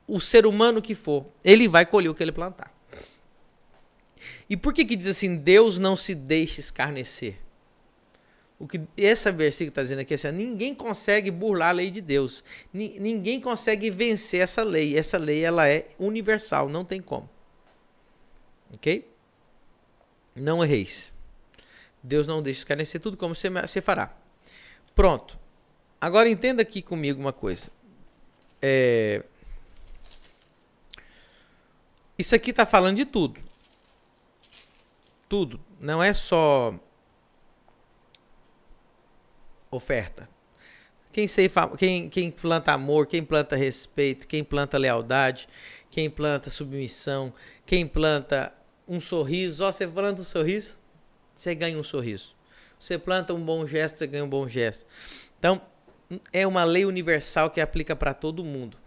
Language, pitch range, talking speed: Portuguese, 145-195 Hz, 130 wpm